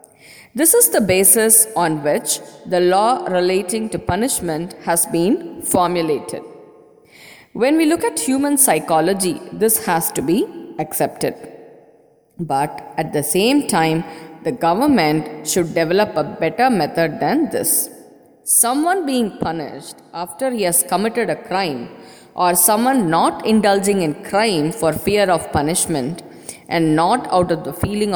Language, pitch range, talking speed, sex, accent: English, 170-250 Hz, 135 wpm, female, Indian